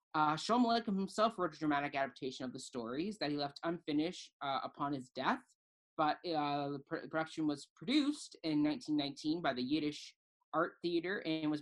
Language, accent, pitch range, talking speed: English, American, 145-200 Hz, 170 wpm